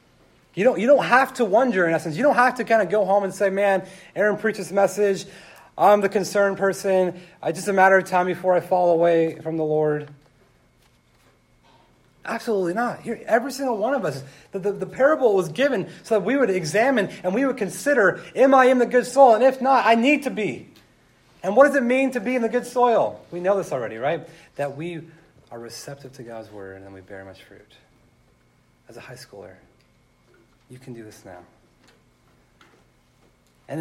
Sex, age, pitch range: male, 30-49, 125-200 Hz